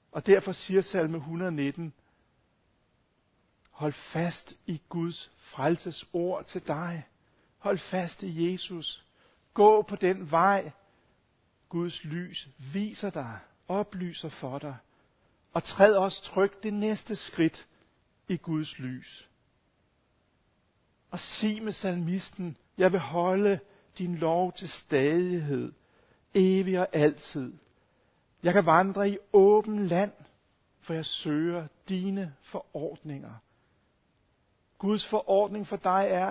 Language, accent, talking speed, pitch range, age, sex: Danish, native, 110 wpm, 160-195 Hz, 60-79, male